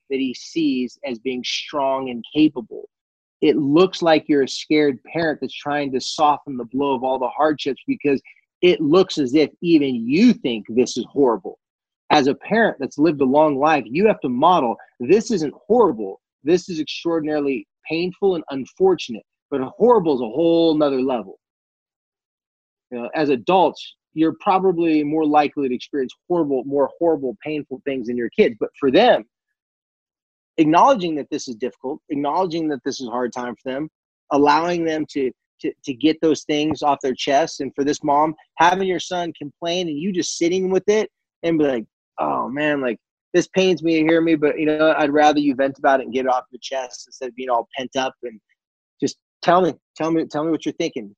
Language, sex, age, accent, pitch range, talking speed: English, male, 30-49, American, 135-185 Hz, 195 wpm